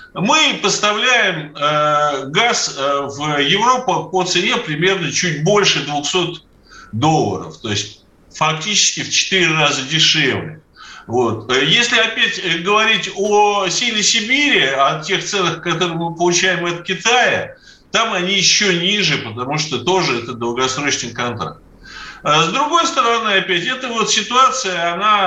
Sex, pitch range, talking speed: male, 150-210 Hz, 120 wpm